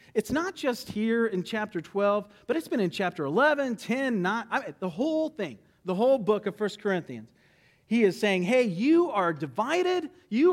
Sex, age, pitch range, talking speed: male, 40-59, 155-235 Hz, 180 wpm